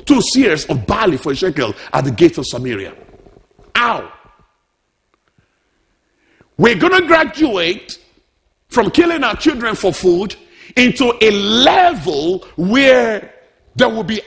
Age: 50-69